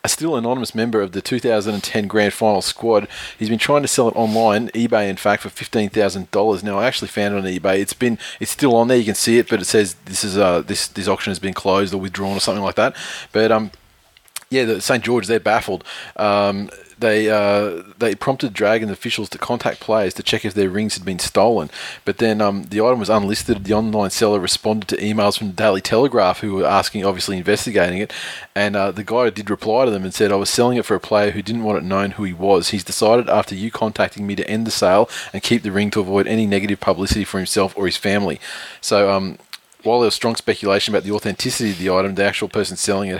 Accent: Australian